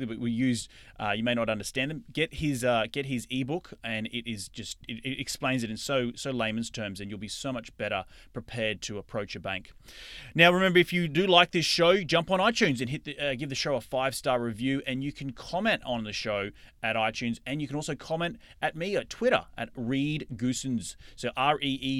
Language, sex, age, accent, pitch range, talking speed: English, male, 30-49, Australian, 115-145 Hz, 235 wpm